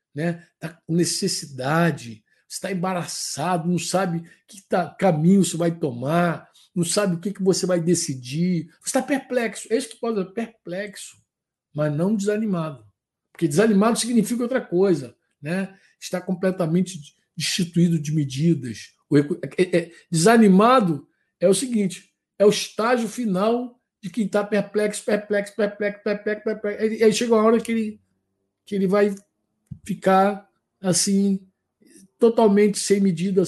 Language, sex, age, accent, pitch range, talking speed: Portuguese, male, 60-79, Brazilian, 175-225 Hz, 140 wpm